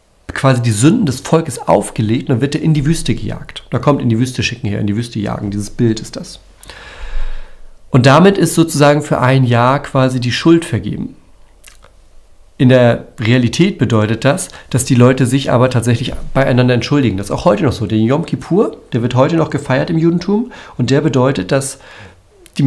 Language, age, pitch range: German, 40-59, 110-155 Hz